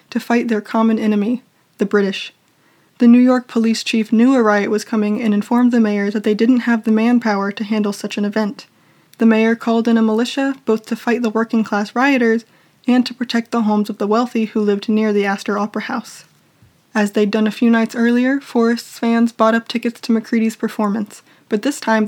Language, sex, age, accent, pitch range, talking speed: English, female, 20-39, American, 220-245 Hz, 210 wpm